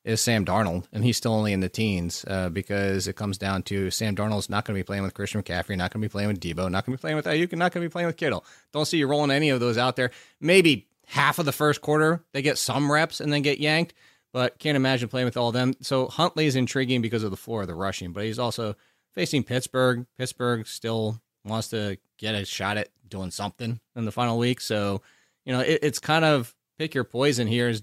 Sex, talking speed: male, 255 wpm